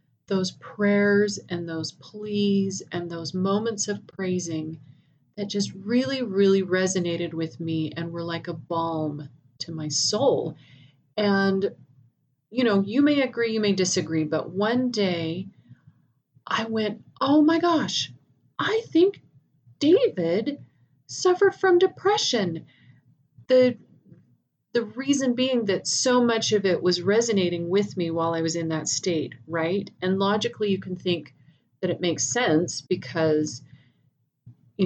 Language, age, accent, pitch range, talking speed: English, 30-49, American, 155-205 Hz, 135 wpm